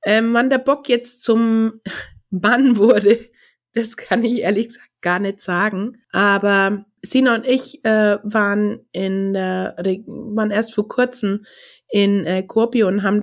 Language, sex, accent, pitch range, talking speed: German, female, German, 185-225 Hz, 150 wpm